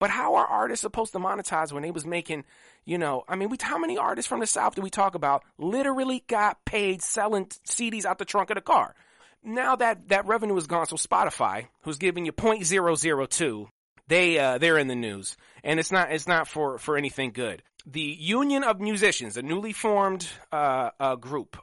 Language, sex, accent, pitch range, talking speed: English, male, American, 140-200 Hz, 215 wpm